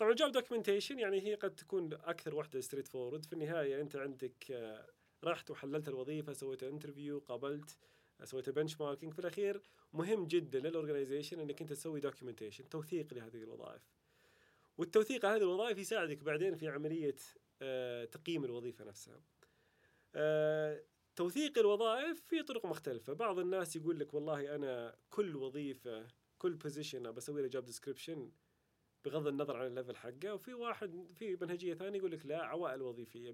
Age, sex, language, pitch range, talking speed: 30-49, male, Arabic, 135-190 Hz, 140 wpm